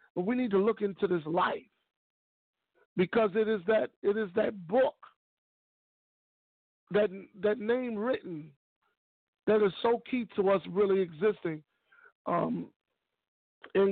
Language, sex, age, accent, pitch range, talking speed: English, male, 50-69, American, 175-205 Hz, 130 wpm